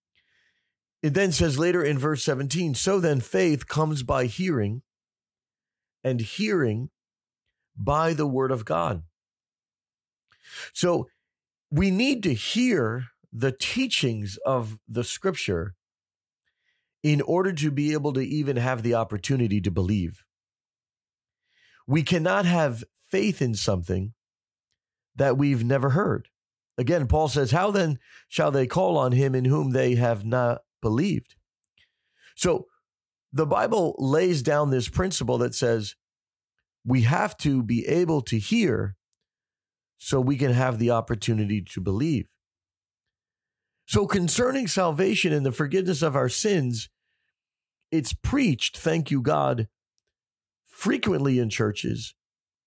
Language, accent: English, American